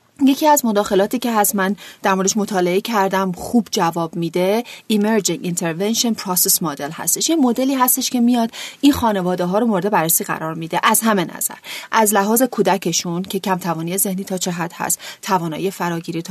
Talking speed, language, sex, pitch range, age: 175 wpm, Persian, female, 180-235 Hz, 30-49